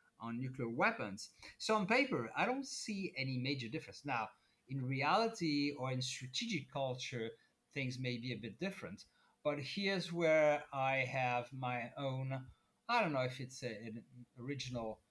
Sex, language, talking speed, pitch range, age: male, English, 160 wpm, 120-145 Hz, 30-49